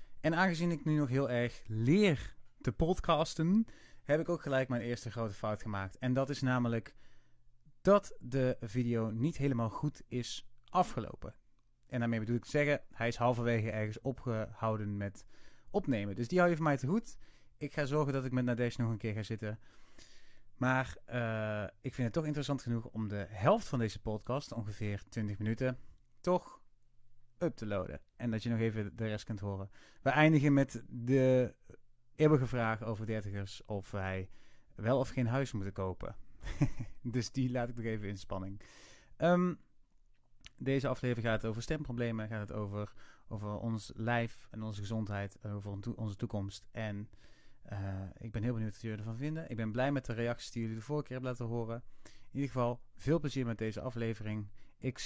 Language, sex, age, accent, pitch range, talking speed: Dutch, male, 30-49, Dutch, 110-130 Hz, 185 wpm